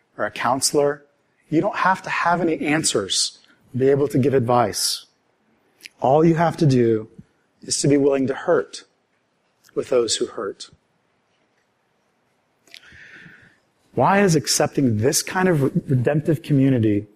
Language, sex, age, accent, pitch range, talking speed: English, male, 40-59, American, 130-165 Hz, 135 wpm